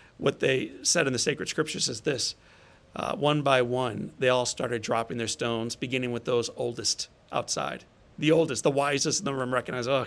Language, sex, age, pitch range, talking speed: English, male, 40-59, 115-130 Hz, 195 wpm